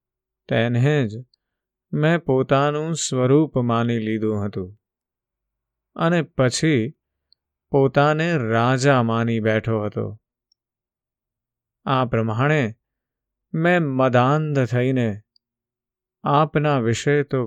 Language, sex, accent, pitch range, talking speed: Gujarati, male, native, 115-140 Hz, 40 wpm